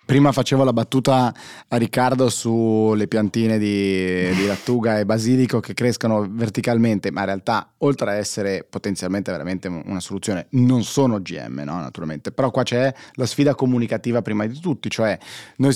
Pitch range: 110-135 Hz